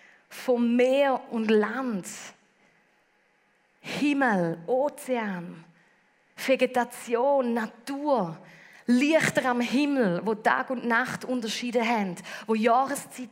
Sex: female